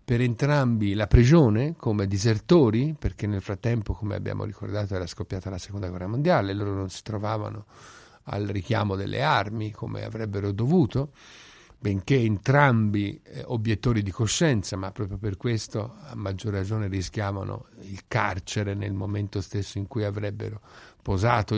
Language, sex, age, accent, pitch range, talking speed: Italian, male, 50-69, native, 100-125 Hz, 140 wpm